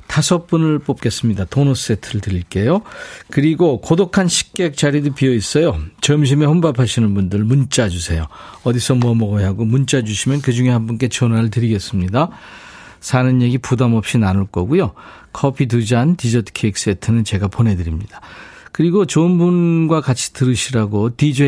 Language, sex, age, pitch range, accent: Korean, male, 40-59, 105-160 Hz, native